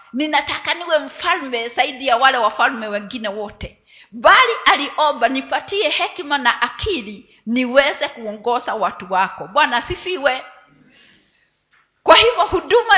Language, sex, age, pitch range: Swahili, female, 50-69, 240-310 Hz